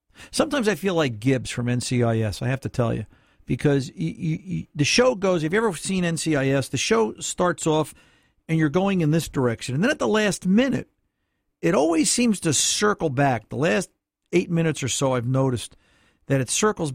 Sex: male